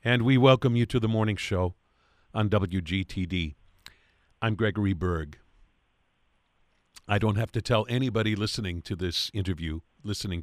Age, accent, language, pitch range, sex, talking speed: 50-69, American, English, 90-105 Hz, male, 140 wpm